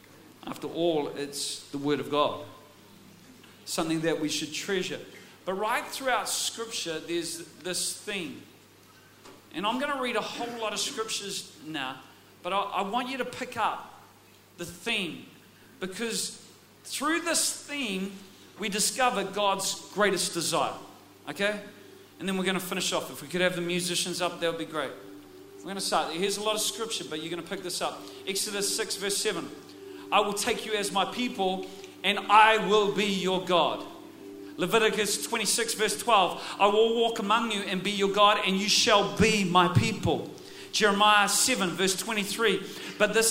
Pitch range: 180-220 Hz